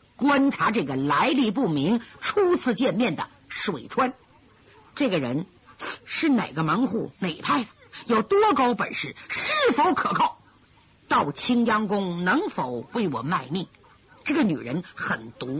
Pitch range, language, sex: 205-280 Hz, Chinese, female